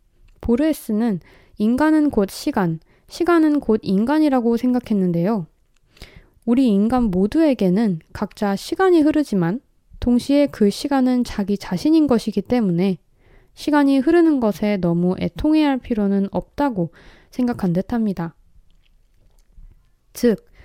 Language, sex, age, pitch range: Korean, female, 20-39, 185-260 Hz